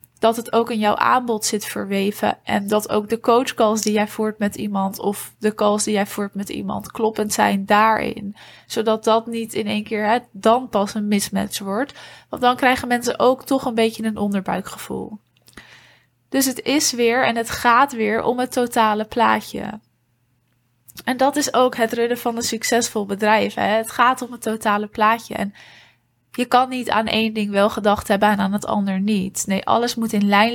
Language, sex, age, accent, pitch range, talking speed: Dutch, female, 20-39, Dutch, 205-235 Hz, 195 wpm